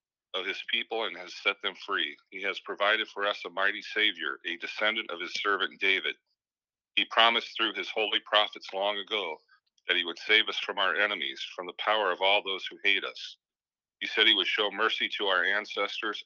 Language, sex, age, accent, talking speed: English, male, 40-59, American, 205 wpm